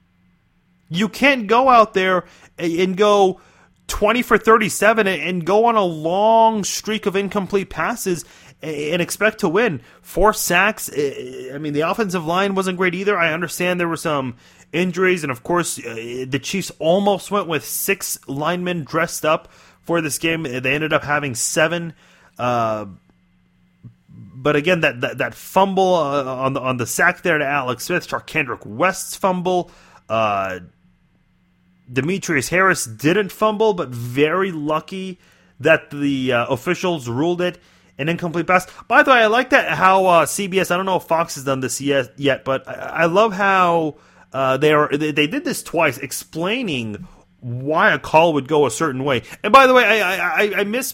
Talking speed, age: 170 wpm, 30-49